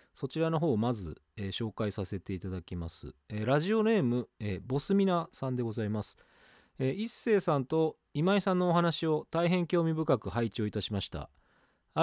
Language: Japanese